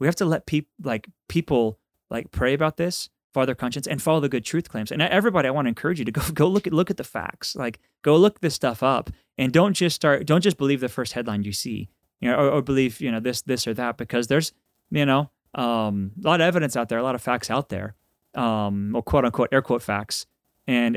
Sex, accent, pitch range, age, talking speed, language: male, American, 110-140 Hz, 30-49, 260 wpm, English